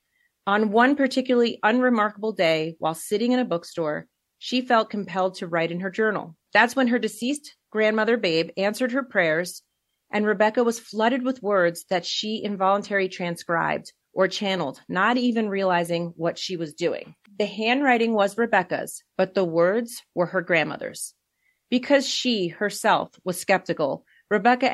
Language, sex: English, female